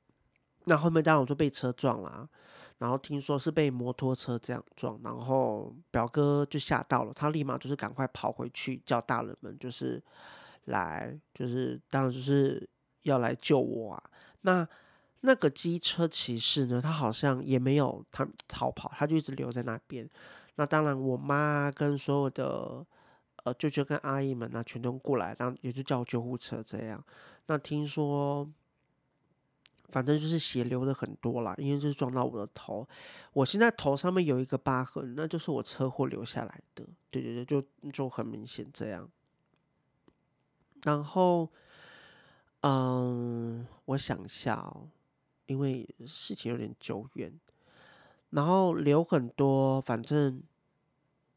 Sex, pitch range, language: male, 125-150 Hz, Chinese